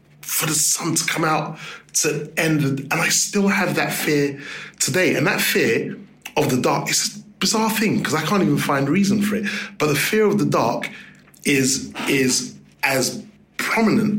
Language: English